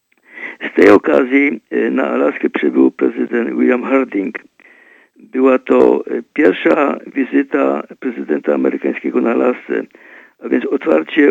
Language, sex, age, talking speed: Polish, male, 50-69, 105 wpm